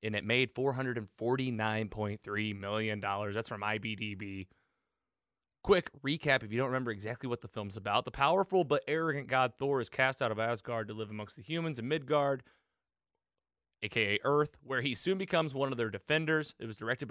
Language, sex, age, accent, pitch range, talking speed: English, male, 30-49, American, 110-155 Hz, 175 wpm